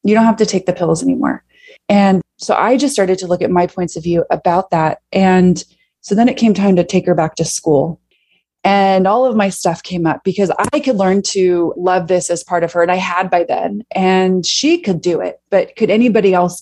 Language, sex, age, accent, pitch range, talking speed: English, female, 20-39, American, 180-230 Hz, 240 wpm